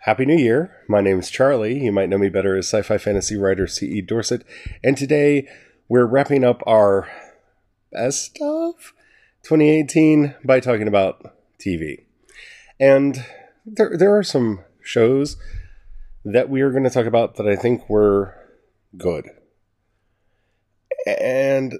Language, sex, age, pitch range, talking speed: English, male, 30-49, 95-125 Hz, 140 wpm